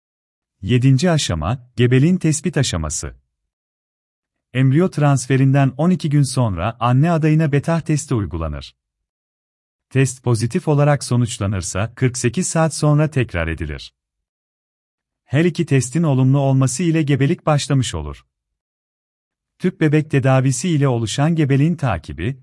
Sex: male